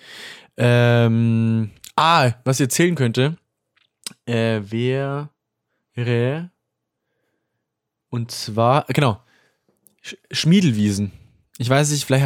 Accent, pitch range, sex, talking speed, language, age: German, 115-145 Hz, male, 90 wpm, German, 20-39